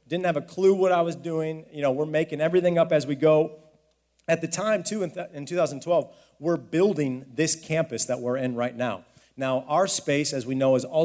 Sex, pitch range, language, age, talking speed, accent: male, 125-160 Hz, English, 40-59, 230 wpm, American